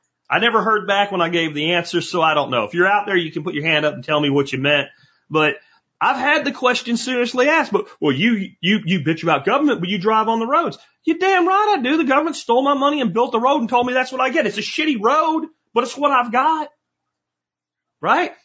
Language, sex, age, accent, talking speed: English, male, 40-59, American, 265 wpm